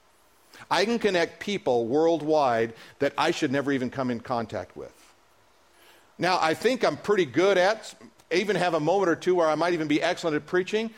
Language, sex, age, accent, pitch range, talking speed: English, male, 50-69, American, 165-225 Hz, 190 wpm